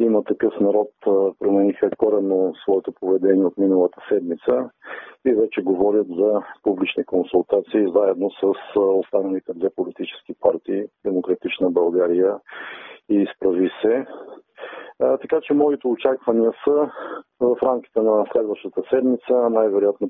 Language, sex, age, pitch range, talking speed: Bulgarian, male, 40-59, 95-145 Hz, 115 wpm